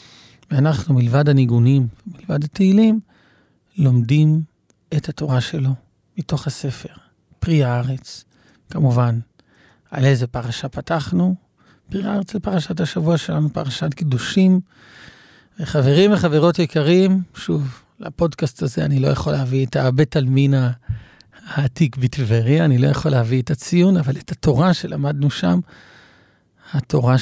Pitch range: 120-155 Hz